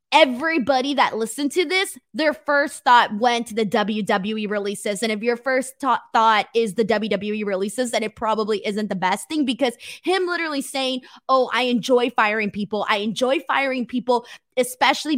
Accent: American